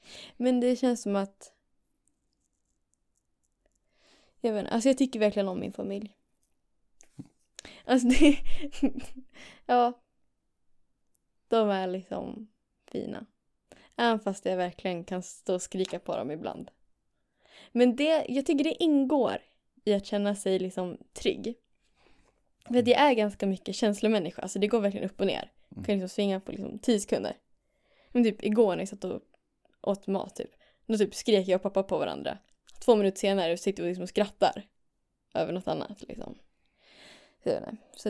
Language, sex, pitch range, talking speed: Swedish, female, 195-240 Hz, 155 wpm